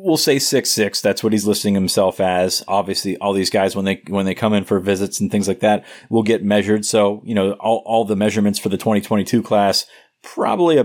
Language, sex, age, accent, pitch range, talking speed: English, male, 30-49, American, 100-110 Hz, 225 wpm